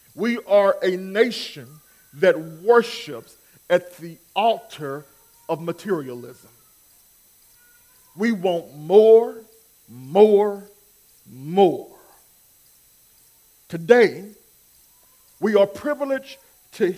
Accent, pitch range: American, 175-255 Hz